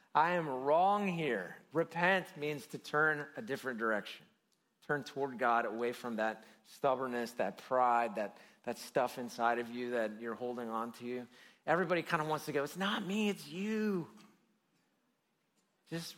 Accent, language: American, English